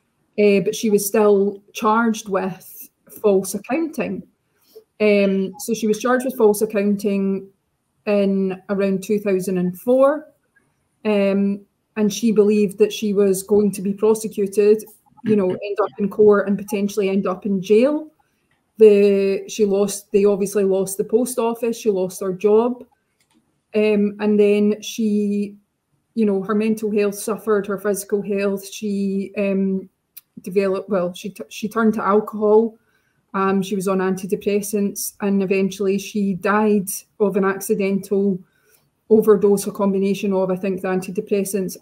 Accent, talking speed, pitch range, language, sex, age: British, 140 wpm, 195-215 Hz, English, female, 20-39